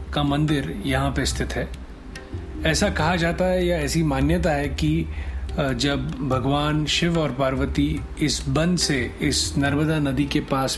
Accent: native